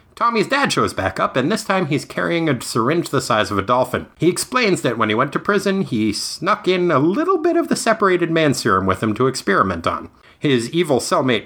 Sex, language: male, English